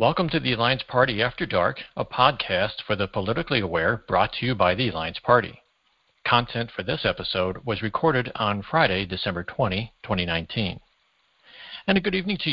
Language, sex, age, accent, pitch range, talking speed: English, male, 60-79, American, 100-130 Hz, 175 wpm